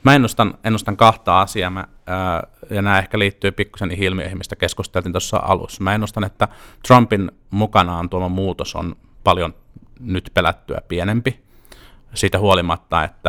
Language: Finnish